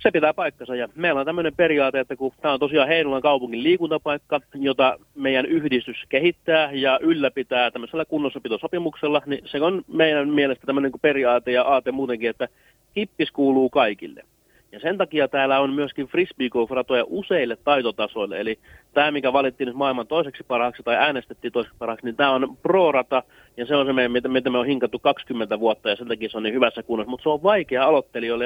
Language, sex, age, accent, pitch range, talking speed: Finnish, male, 30-49, native, 125-155 Hz, 185 wpm